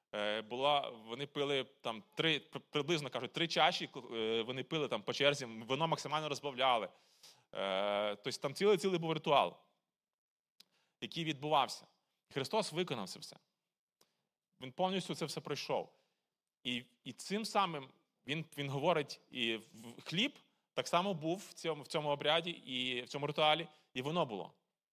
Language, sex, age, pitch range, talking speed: Ukrainian, male, 30-49, 130-165 Hz, 140 wpm